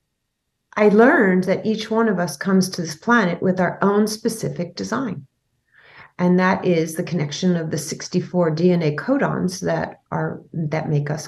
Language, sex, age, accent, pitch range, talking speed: English, female, 40-59, American, 160-195 Hz, 165 wpm